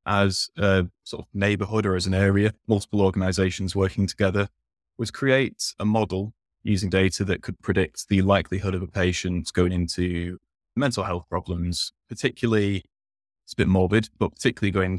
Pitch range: 90-105 Hz